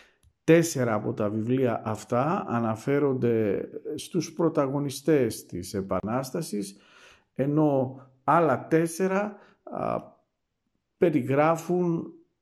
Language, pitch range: Greek, 125-165 Hz